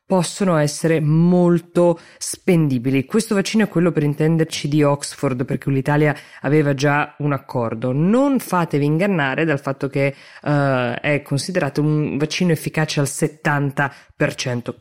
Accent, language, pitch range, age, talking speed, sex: native, Italian, 135-175 Hz, 20-39, 125 wpm, female